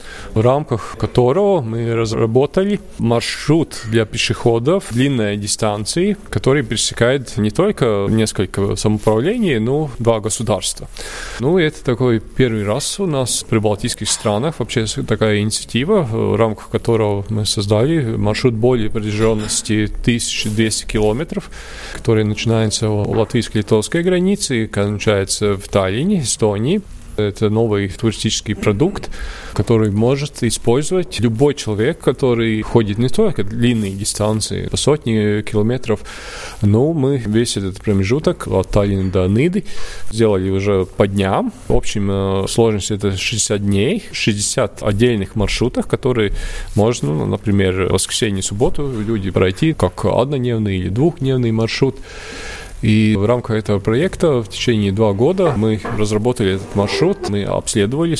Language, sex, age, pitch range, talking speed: Russian, male, 20-39, 100-120 Hz, 125 wpm